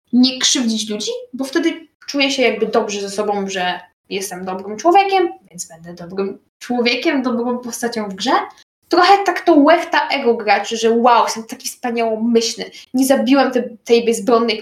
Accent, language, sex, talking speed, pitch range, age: native, Polish, female, 160 wpm, 215-270 Hz, 10-29